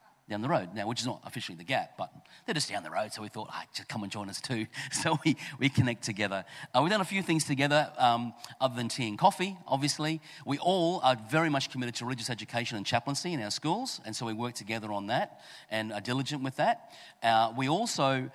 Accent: Australian